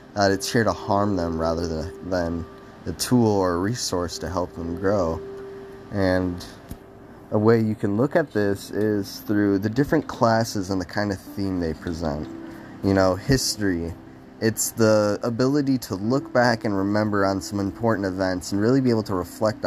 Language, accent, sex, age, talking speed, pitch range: English, American, male, 20-39, 180 wpm, 95-125 Hz